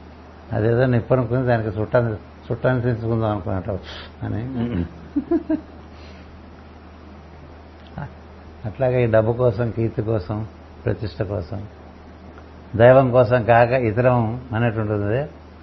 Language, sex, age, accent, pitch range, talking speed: Telugu, male, 60-79, native, 85-125 Hz, 75 wpm